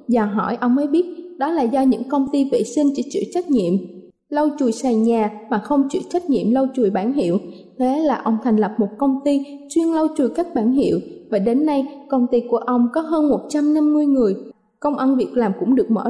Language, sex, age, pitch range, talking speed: Vietnamese, female, 20-39, 235-295 Hz, 230 wpm